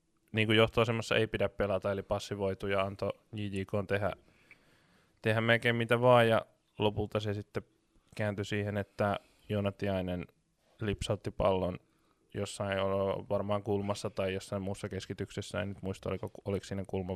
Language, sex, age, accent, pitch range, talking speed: Finnish, male, 20-39, native, 100-110 Hz, 135 wpm